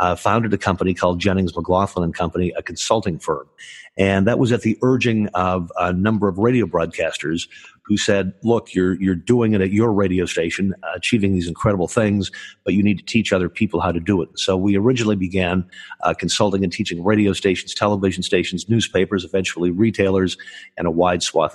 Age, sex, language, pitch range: 50-69, male, English, 90-105 Hz